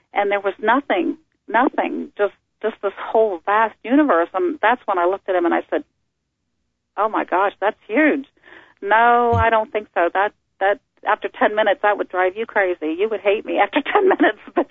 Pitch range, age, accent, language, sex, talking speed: 180-230 Hz, 40-59, American, English, female, 200 wpm